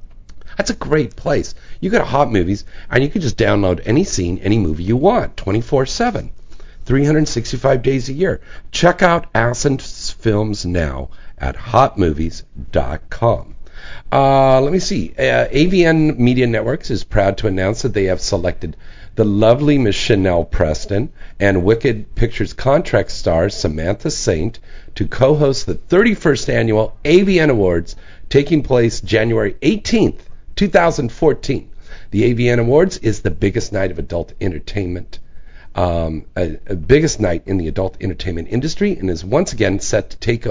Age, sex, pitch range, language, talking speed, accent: 50-69, male, 90-125 Hz, English, 145 wpm, American